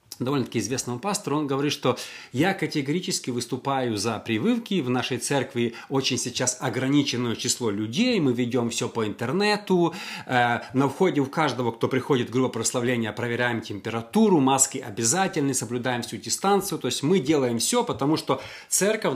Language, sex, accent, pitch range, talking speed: Russian, male, native, 120-155 Hz, 145 wpm